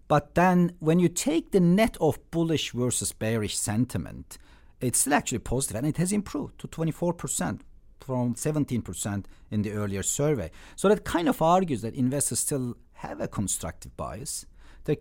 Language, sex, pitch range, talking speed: English, male, 100-150 Hz, 160 wpm